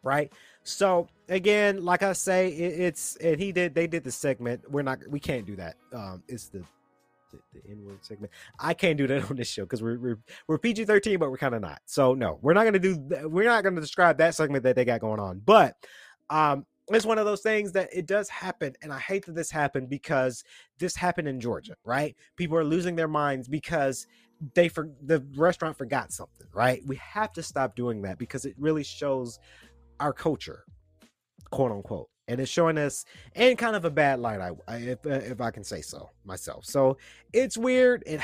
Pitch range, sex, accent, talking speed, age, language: 115-170 Hz, male, American, 215 wpm, 30-49, English